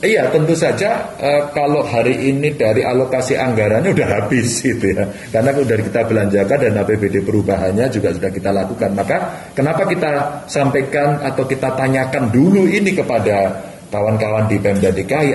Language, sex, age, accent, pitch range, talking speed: Indonesian, male, 30-49, native, 95-125 Hz, 155 wpm